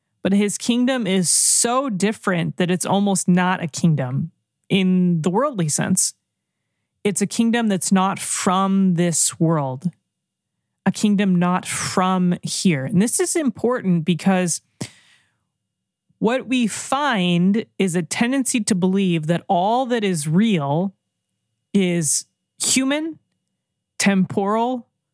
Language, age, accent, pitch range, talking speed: English, 20-39, American, 175-225 Hz, 120 wpm